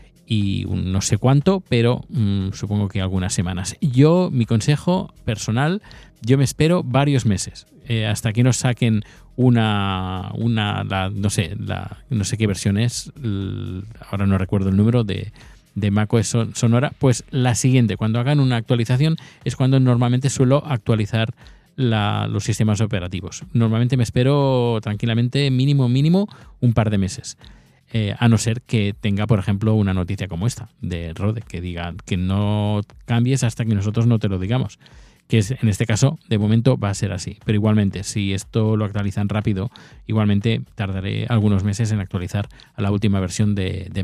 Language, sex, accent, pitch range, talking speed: Spanish, male, Spanish, 105-125 Hz, 175 wpm